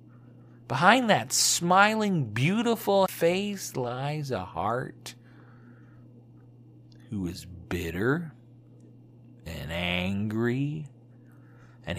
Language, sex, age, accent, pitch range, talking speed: English, male, 50-69, American, 115-165 Hz, 70 wpm